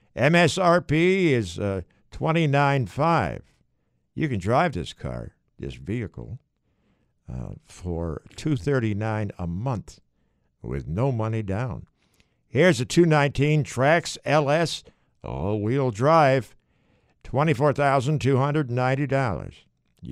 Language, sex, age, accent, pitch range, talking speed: English, male, 60-79, American, 110-155 Hz, 85 wpm